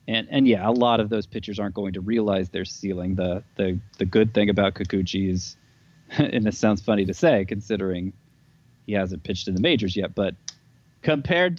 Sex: male